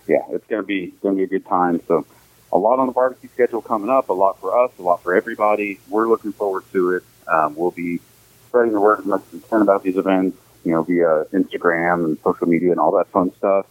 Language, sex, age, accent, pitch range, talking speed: English, male, 40-59, American, 90-125 Hz, 255 wpm